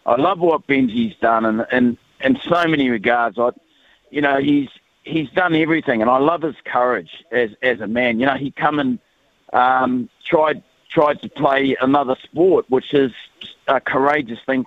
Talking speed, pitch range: 185 wpm, 120-140 Hz